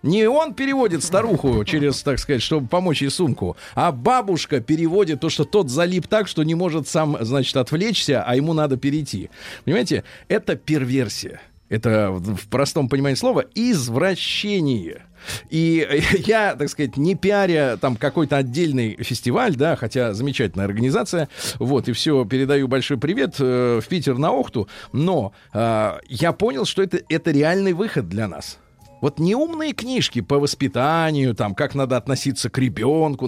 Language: Russian